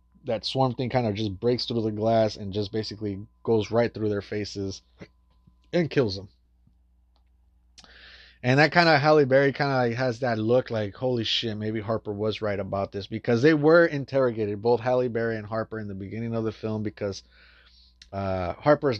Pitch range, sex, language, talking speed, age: 95-120 Hz, male, English, 185 wpm, 20-39